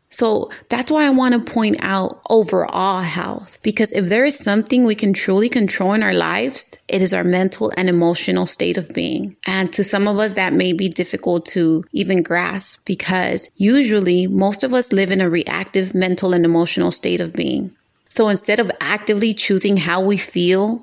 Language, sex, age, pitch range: English, female, 30-49, 185-225 Hz